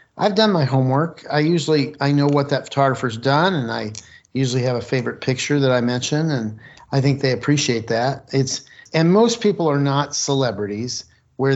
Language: English